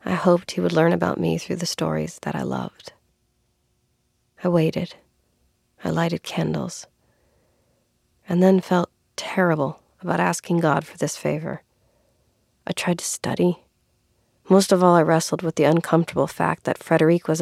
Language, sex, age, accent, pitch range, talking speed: English, female, 40-59, American, 160-180 Hz, 150 wpm